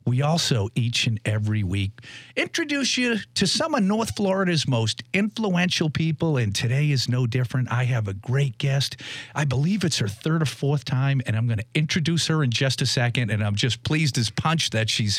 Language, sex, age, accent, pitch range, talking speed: English, male, 50-69, American, 130-200 Hz, 205 wpm